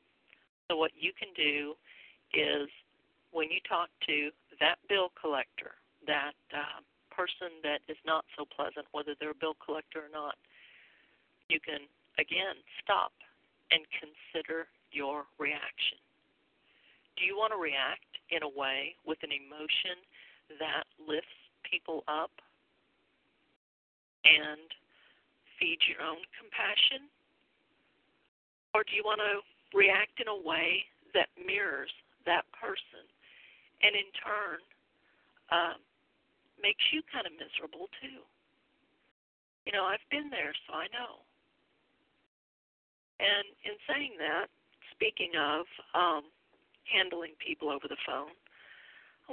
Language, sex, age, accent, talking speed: English, female, 50-69, American, 120 wpm